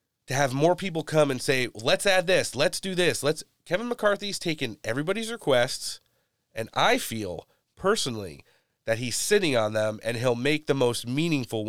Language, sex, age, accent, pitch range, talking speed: English, male, 30-49, American, 110-140 Hz, 175 wpm